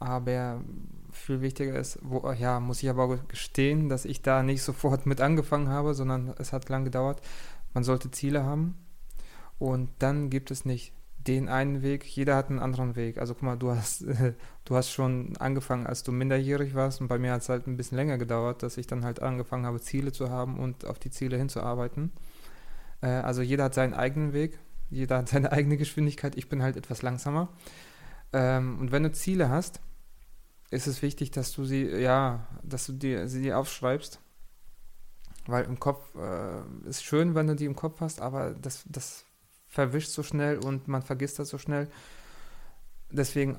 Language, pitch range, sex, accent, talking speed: German, 125-145 Hz, male, German, 185 wpm